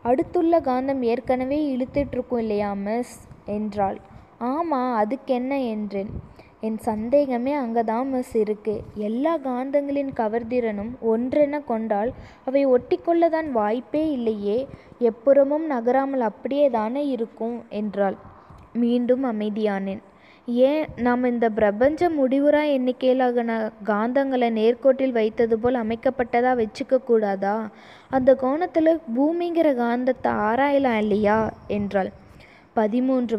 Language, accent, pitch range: Tamil, native, 215-265 Hz